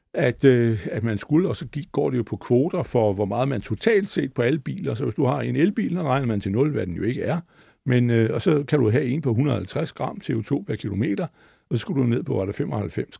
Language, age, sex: Danish, 60-79, male